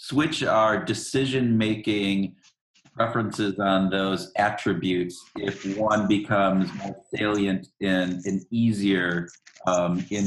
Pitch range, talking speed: 95-120 Hz, 95 wpm